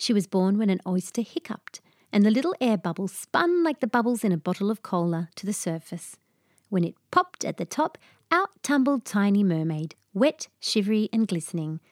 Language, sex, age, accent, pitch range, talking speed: English, female, 40-59, Australian, 175-220 Hz, 190 wpm